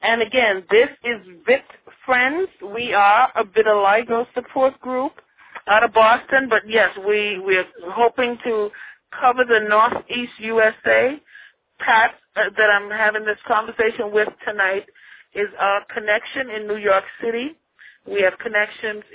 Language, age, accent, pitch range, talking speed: English, 40-59, American, 210-250 Hz, 140 wpm